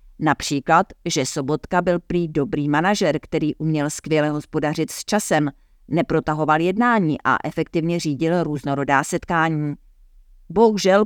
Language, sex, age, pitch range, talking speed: Czech, female, 50-69, 145-180 Hz, 115 wpm